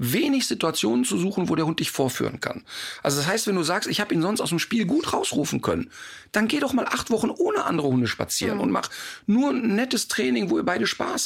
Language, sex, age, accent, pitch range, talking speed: German, male, 40-59, German, 140-225 Hz, 245 wpm